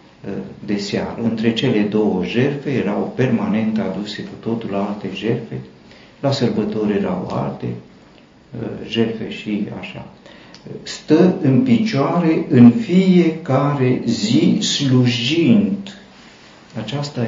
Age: 50-69